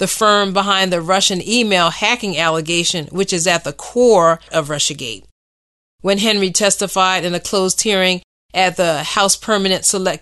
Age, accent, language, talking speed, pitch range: 40-59, American, English, 160 wpm, 170-205 Hz